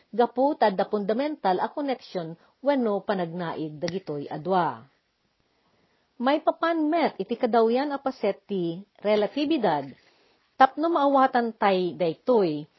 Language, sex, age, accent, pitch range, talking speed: Filipino, female, 50-69, native, 185-255 Hz, 95 wpm